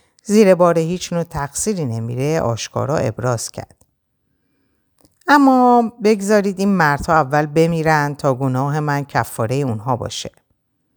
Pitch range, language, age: 125-165 Hz, Persian, 50-69